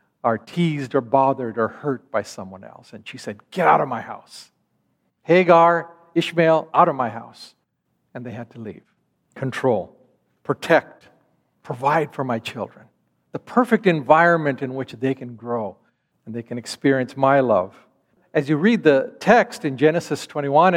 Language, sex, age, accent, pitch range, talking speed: English, male, 50-69, American, 135-190 Hz, 160 wpm